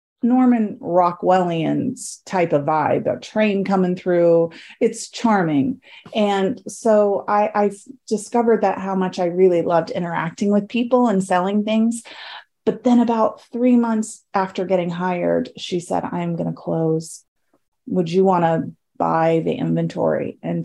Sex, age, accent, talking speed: female, 30-49, American, 145 wpm